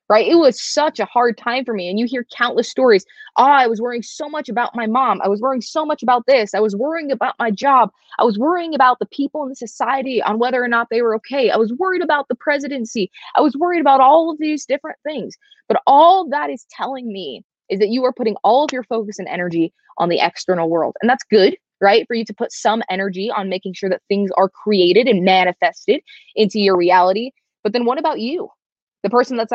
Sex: female